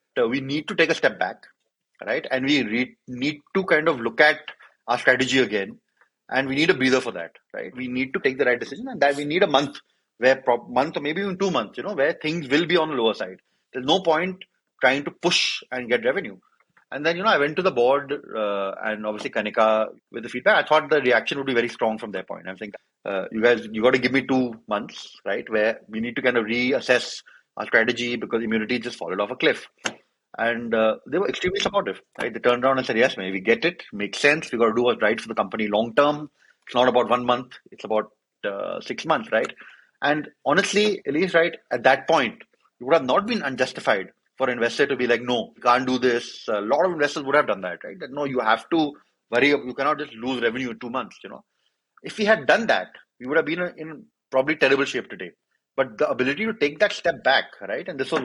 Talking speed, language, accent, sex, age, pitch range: 245 wpm, English, Indian, male, 30-49, 120-155 Hz